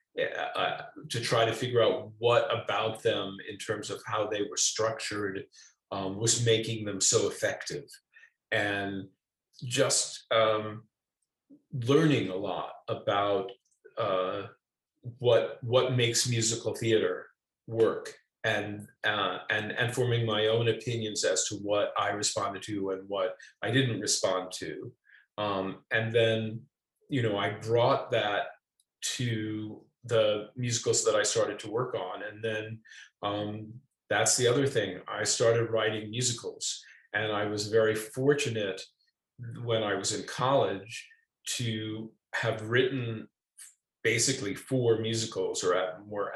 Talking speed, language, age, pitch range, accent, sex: 130 wpm, English, 40-59, 110-130 Hz, American, male